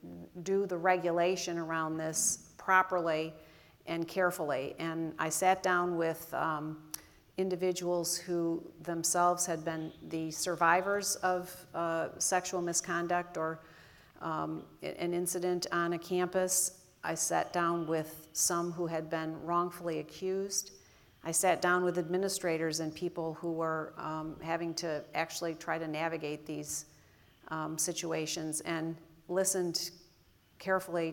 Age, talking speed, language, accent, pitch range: 40-59, 125 wpm, English, American, 160-180 Hz